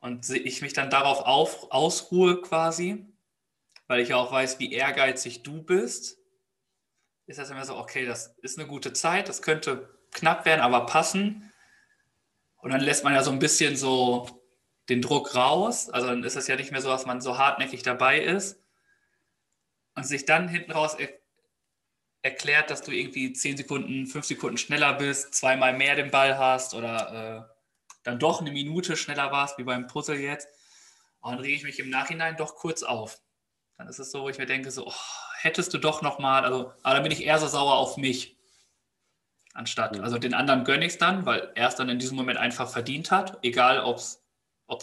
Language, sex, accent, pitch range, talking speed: German, male, German, 125-160 Hz, 195 wpm